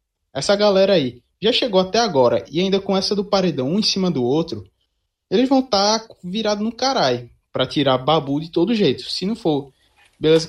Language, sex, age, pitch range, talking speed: Portuguese, male, 20-39, 135-200 Hz, 195 wpm